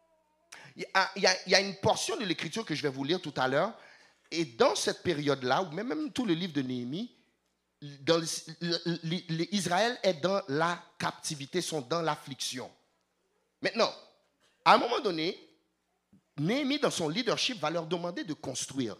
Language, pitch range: English, 145-205 Hz